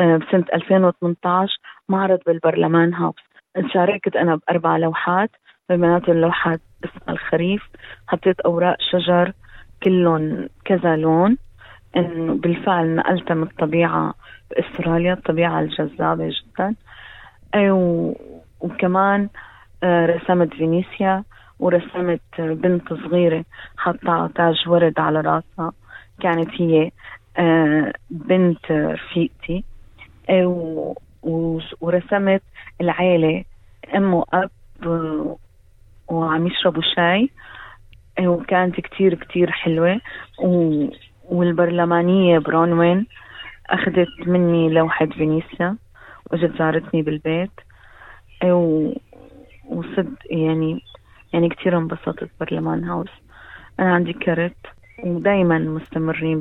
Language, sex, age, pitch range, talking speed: Arabic, female, 30-49, 160-180 Hz, 85 wpm